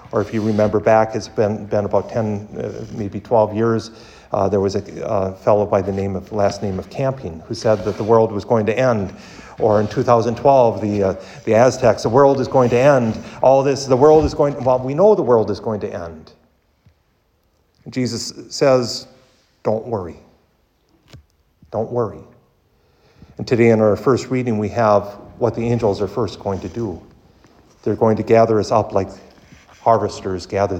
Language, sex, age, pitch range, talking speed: English, male, 50-69, 100-115 Hz, 185 wpm